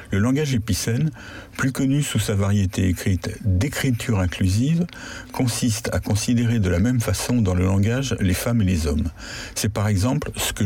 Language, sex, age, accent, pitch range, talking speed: French, male, 50-69, French, 95-120 Hz, 175 wpm